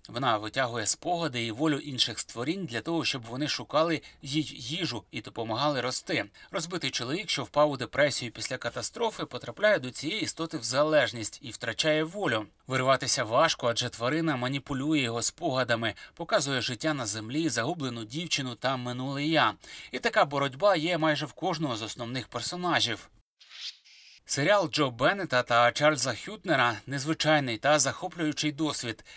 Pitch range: 125-165 Hz